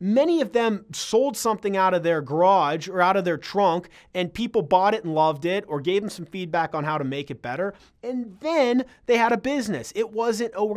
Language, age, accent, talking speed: English, 30-49, American, 235 wpm